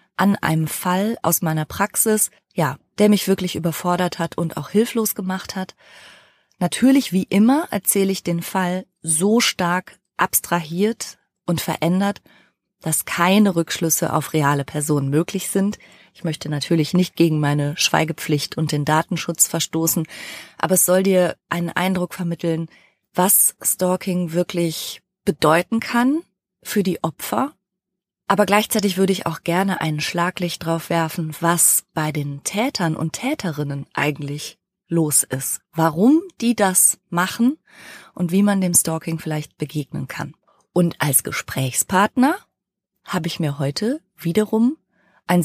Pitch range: 160-200 Hz